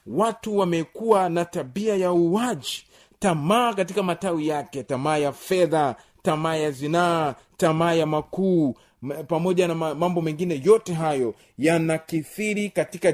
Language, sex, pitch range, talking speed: Swahili, male, 160-205 Hz, 125 wpm